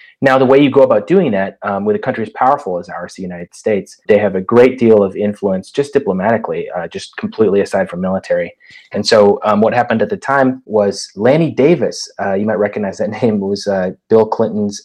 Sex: male